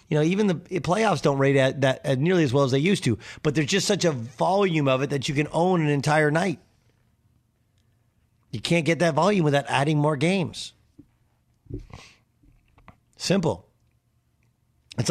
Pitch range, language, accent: 135-185 Hz, English, American